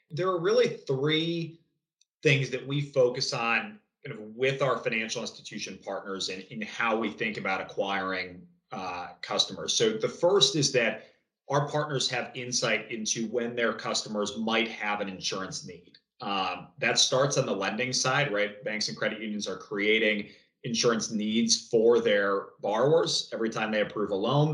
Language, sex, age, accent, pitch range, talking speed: English, male, 30-49, American, 110-150 Hz, 170 wpm